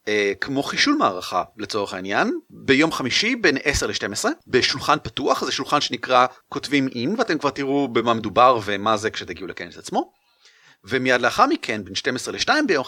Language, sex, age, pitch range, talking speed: Hebrew, male, 30-49, 110-160 Hz, 160 wpm